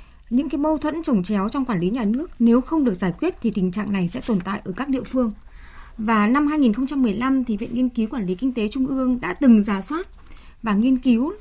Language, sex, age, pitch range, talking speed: Vietnamese, female, 20-39, 210-275 Hz, 245 wpm